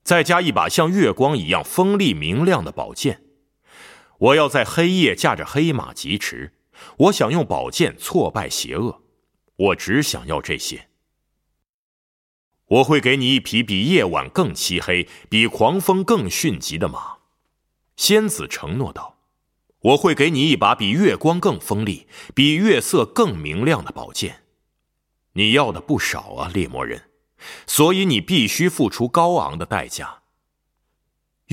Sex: male